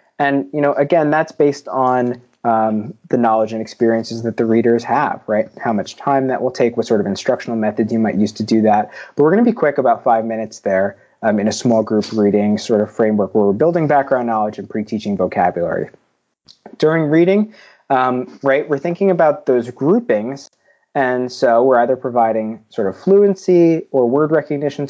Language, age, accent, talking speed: English, 20-39, American, 195 wpm